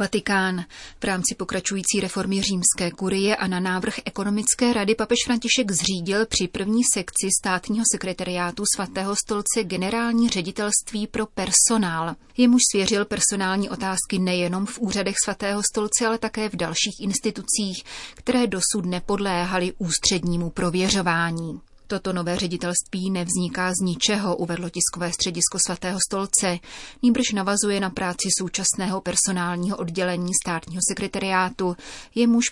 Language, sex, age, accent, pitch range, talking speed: Czech, female, 30-49, native, 175-205 Hz, 120 wpm